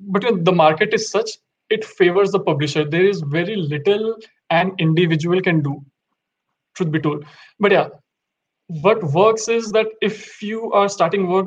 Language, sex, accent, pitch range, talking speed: English, male, Indian, 170-200 Hz, 160 wpm